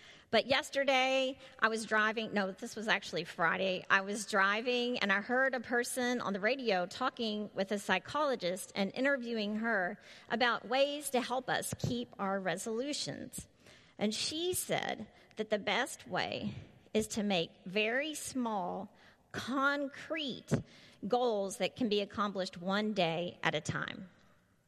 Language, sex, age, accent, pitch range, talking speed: English, female, 40-59, American, 205-260 Hz, 145 wpm